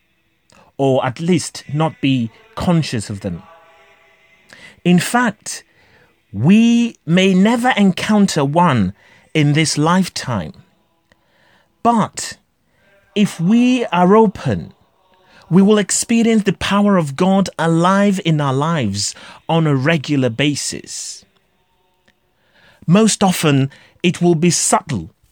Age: 30-49